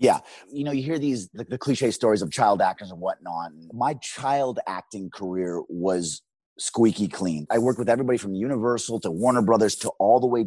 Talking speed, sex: 200 wpm, male